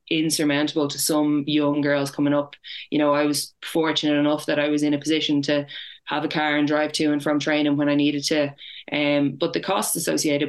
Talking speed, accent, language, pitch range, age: 215 wpm, Irish, English, 145-150 Hz, 20-39